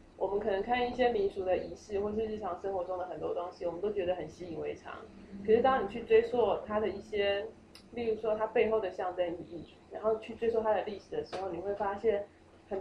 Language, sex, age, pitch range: Chinese, female, 20-39, 175-240 Hz